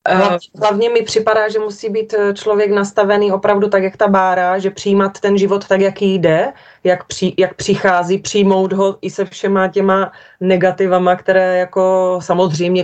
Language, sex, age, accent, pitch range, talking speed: Czech, female, 30-49, native, 175-200 Hz, 160 wpm